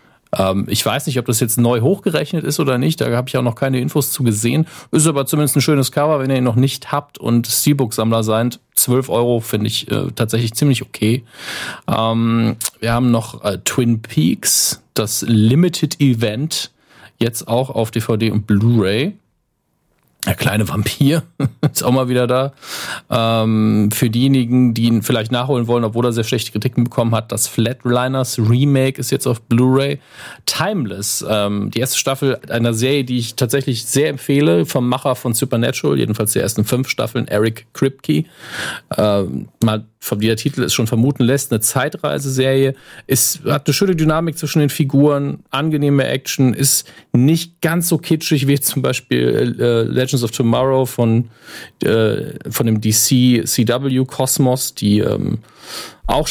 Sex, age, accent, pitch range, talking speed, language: male, 40-59, German, 115-135 Hz, 165 wpm, German